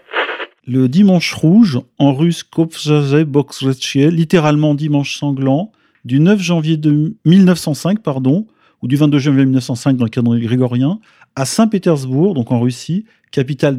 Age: 40-59